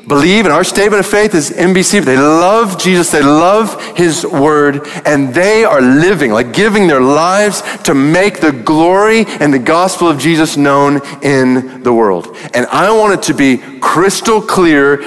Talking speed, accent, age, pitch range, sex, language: 180 wpm, American, 40-59, 140-205 Hz, male, English